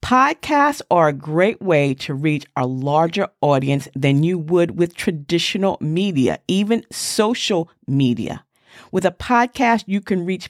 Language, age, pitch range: English, 40-59, 150-205 Hz